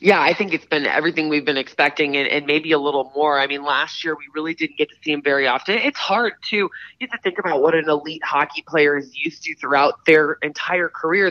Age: 20-39